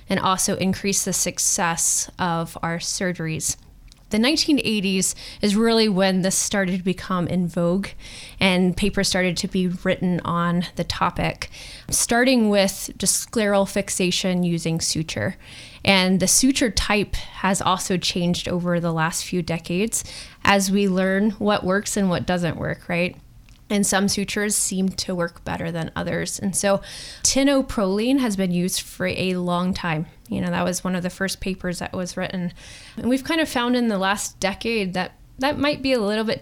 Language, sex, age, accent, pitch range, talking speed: English, female, 20-39, American, 180-205 Hz, 170 wpm